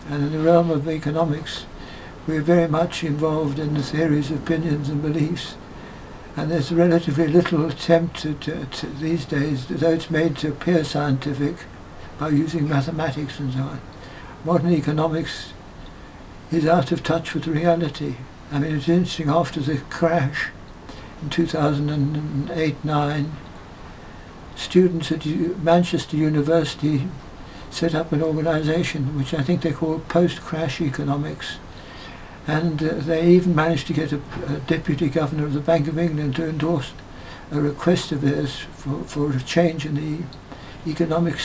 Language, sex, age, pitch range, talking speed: English, male, 60-79, 145-165 Hz, 140 wpm